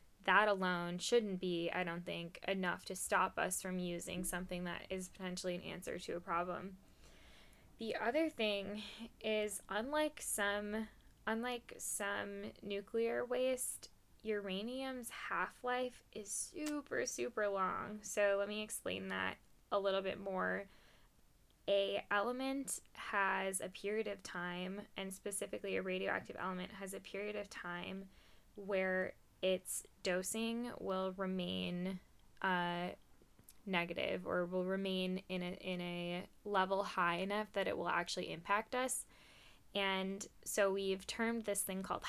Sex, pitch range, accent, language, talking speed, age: female, 180-205 Hz, American, English, 135 wpm, 10-29